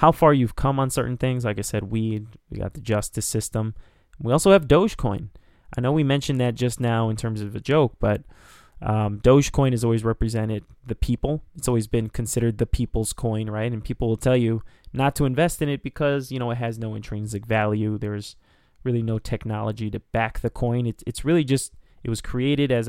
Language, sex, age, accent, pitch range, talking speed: English, male, 20-39, American, 110-130 Hz, 215 wpm